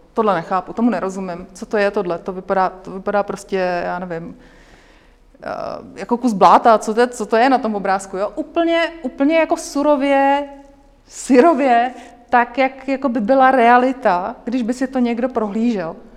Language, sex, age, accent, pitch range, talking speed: Czech, female, 30-49, native, 210-255 Hz, 165 wpm